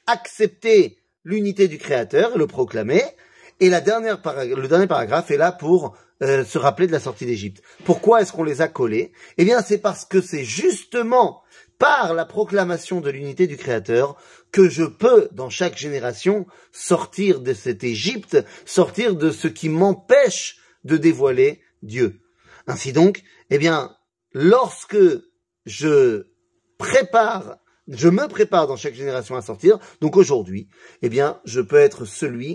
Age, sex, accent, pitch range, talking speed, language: 30-49, male, French, 140-225 Hz, 155 wpm, French